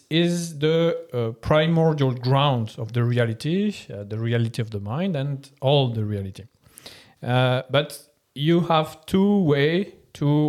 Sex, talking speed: male, 145 wpm